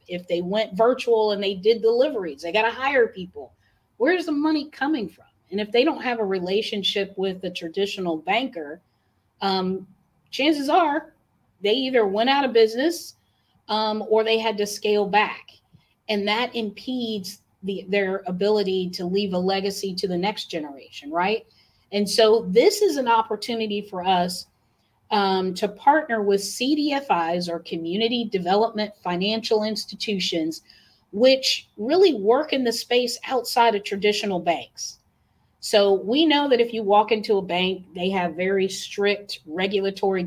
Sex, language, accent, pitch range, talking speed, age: female, English, American, 185-230 Hz, 150 wpm, 30-49